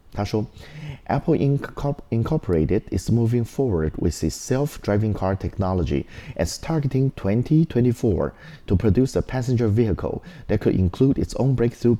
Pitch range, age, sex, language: 85-120 Hz, 30-49, male, Chinese